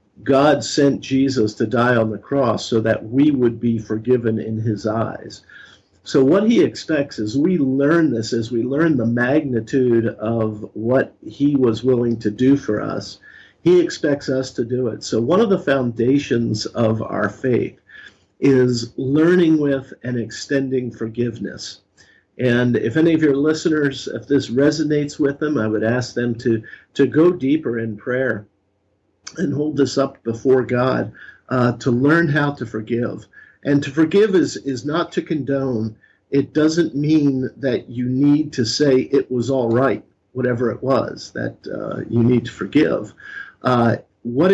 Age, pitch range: 50-69, 115-145 Hz